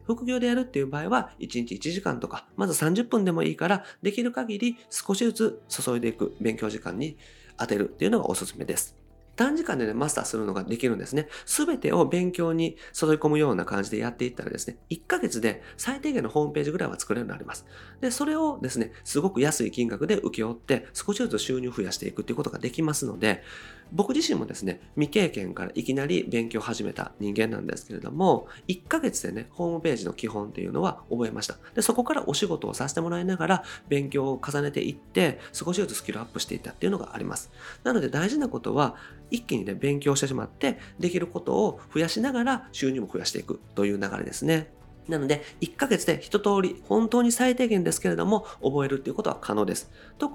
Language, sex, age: Japanese, male, 40-59